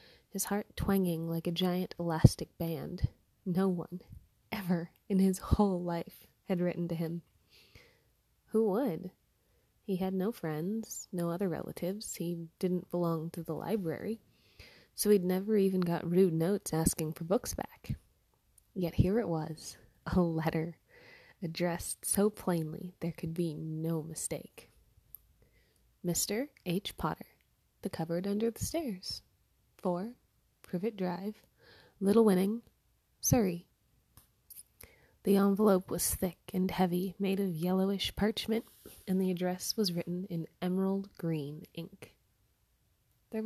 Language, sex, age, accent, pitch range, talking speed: English, female, 20-39, American, 170-200 Hz, 125 wpm